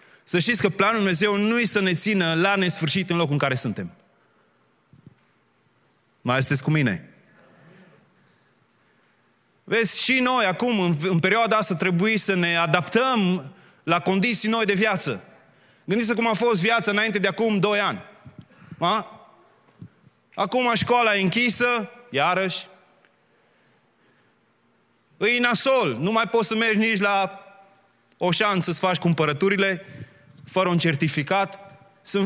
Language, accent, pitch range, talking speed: Romanian, native, 180-225 Hz, 135 wpm